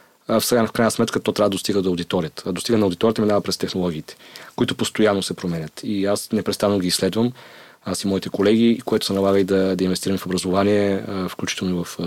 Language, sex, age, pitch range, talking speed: Bulgarian, male, 30-49, 90-105 Hz, 210 wpm